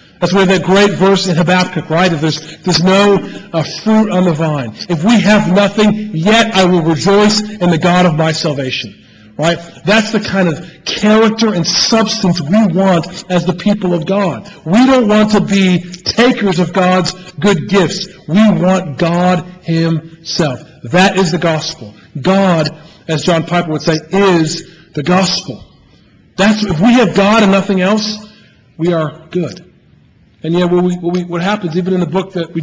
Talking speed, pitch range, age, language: 180 wpm, 165-200 Hz, 40-59, English